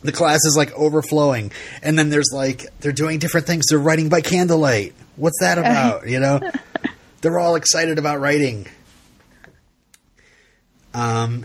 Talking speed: 145 wpm